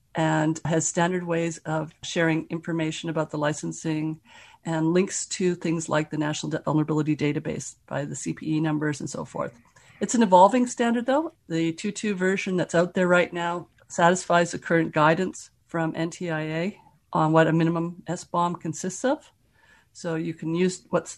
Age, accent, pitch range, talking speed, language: 50-69, American, 160-185 Hz, 160 wpm, English